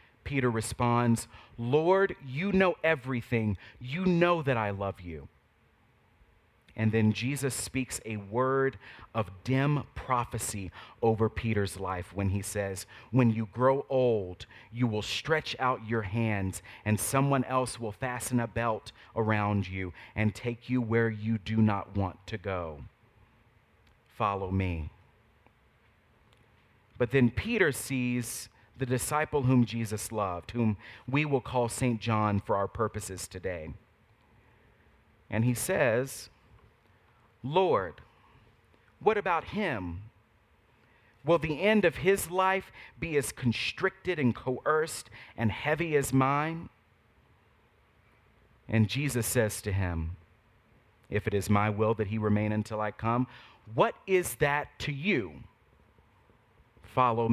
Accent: American